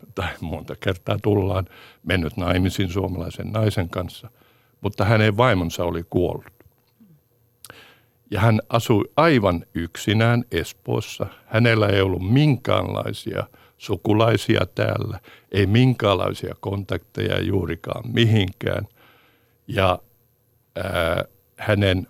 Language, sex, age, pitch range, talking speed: Finnish, male, 60-79, 95-120 Hz, 90 wpm